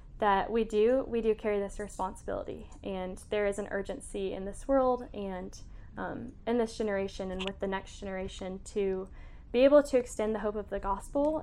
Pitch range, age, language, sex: 195-220 Hz, 10-29, English, female